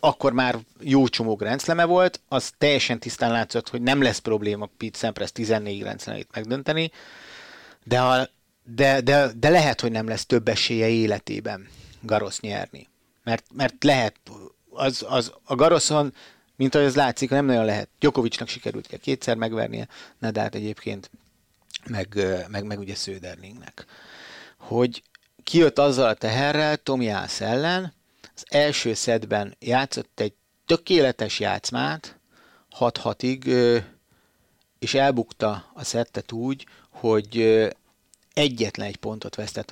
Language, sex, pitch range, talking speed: Hungarian, male, 105-135 Hz, 125 wpm